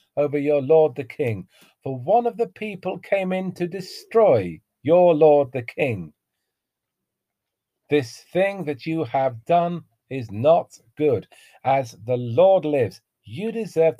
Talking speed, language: 140 wpm, English